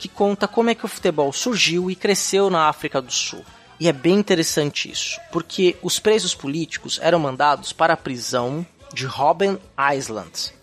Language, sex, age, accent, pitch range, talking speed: Portuguese, male, 20-39, Brazilian, 150-205 Hz, 175 wpm